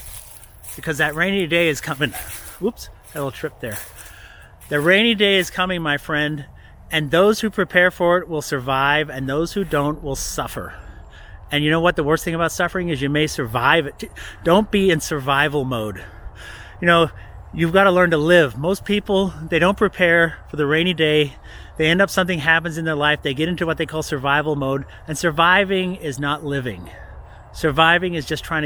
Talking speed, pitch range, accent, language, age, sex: 195 wpm, 125-175 Hz, American, English, 30-49, male